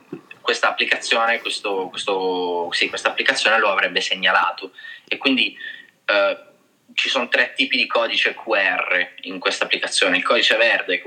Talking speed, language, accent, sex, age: 145 wpm, Italian, native, male, 20-39